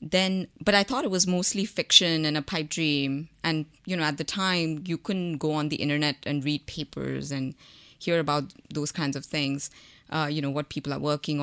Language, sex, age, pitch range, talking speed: English, female, 20-39, 145-180 Hz, 215 wpm